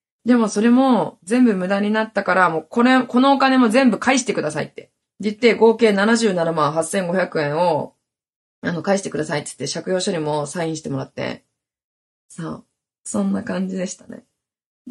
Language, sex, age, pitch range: Japanese, female, 20-39, 180-245 Hz